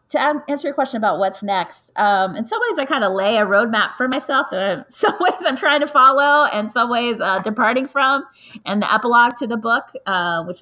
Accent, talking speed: American, 225 wpm